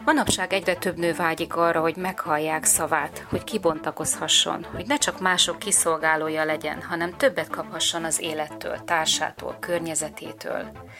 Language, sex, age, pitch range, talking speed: Hungarian, female, 30-49, 155-180 Hz, 130 wpm